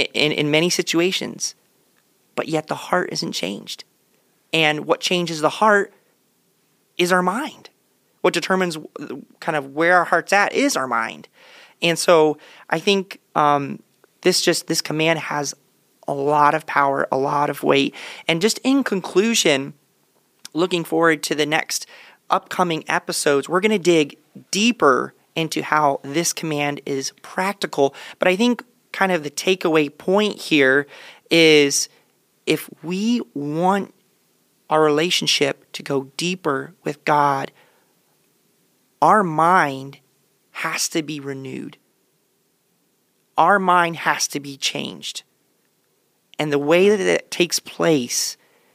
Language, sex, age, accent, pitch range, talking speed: English, male, 30-49, American, 145-185 Hz, 135 wpm